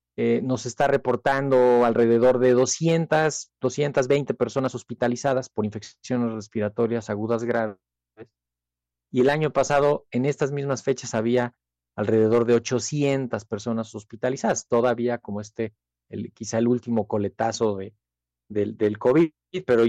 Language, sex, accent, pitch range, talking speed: Spanish, male, Mexican, 110-135 Hz, 125 wpm